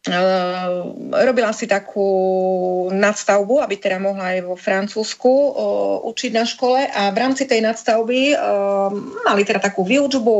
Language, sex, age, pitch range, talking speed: Slovak, female, 30-49, 195-235 Hz, 125 wpm